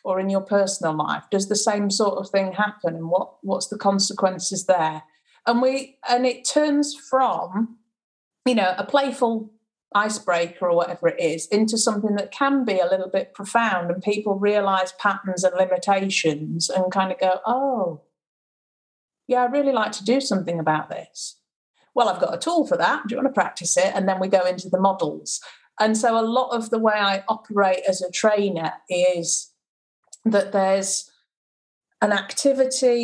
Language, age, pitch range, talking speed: English, 40-59, 180-220 Hz, 180 wpm